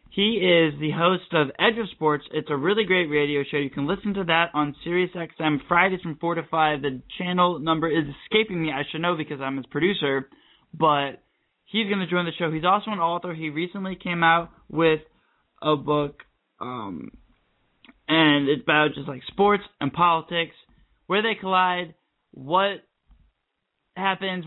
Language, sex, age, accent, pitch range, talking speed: English, male, 20-39, American, 150-180 Hz, 175 wpm